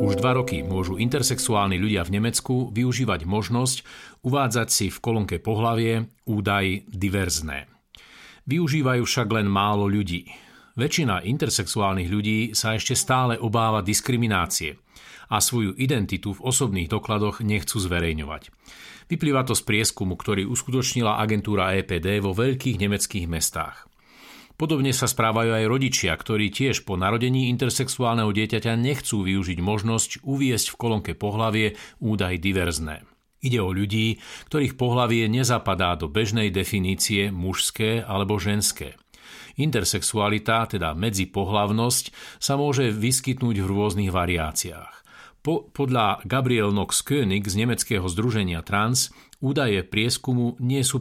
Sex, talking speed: male, 120 wpm